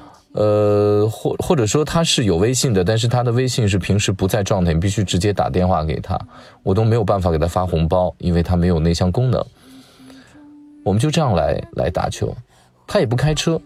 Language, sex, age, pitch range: Chinese, male, 20-39, 90-130 Hz